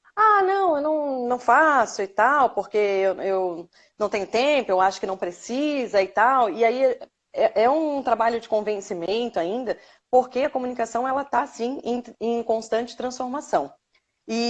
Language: Portuguese